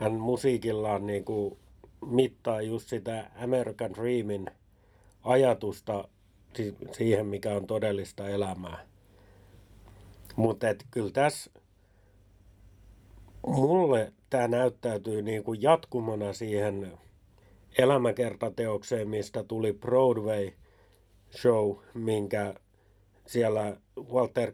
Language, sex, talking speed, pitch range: Finnish, male, 75 wpm, 100-120 Hz